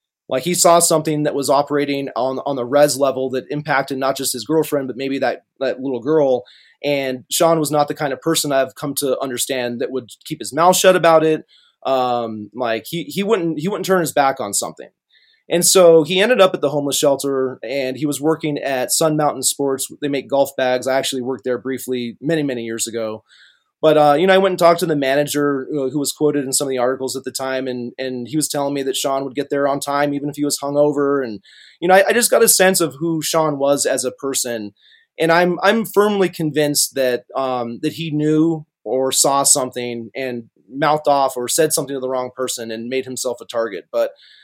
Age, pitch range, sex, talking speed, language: 30-49, 130-160 Hz, male, 235 wpm, English